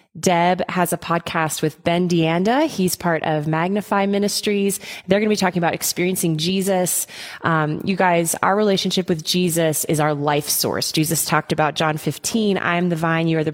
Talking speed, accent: 190 wpm, American